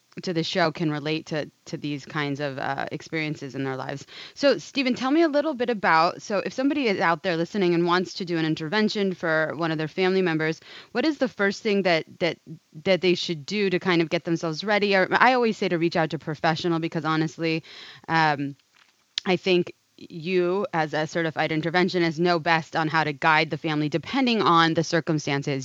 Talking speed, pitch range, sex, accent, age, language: 210 wpm, 155-185 Hz, female, American, 20-39, English